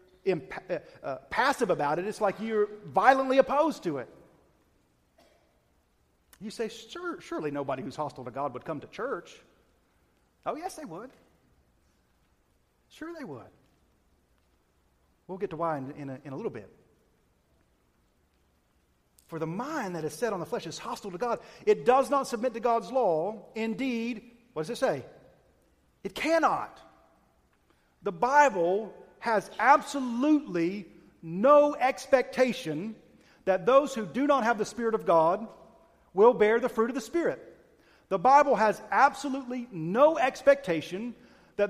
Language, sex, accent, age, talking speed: English, male, American, 40-59, 140 wpm